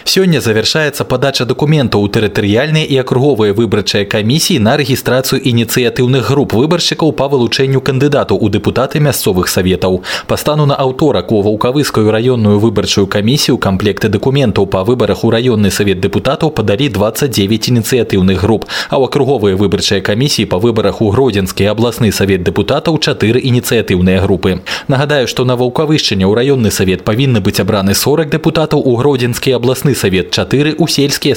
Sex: male